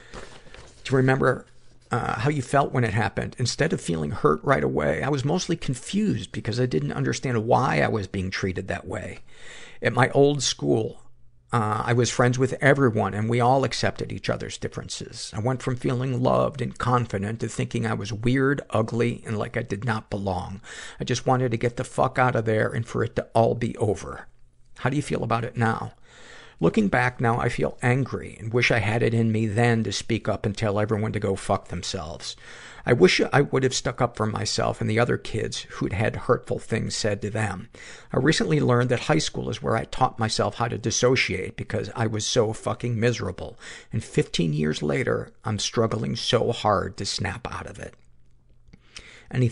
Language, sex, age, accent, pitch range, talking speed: English, male, 50-69, American, 105-125 Hz, 205 wpm